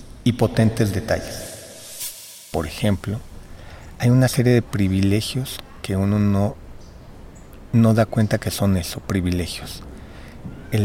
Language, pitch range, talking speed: Spanish, 100-120 Hz, 115 wpm